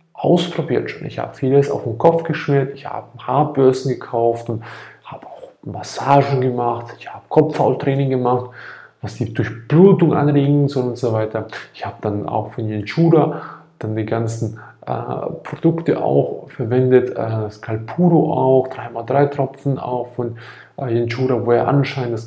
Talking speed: 150 wpm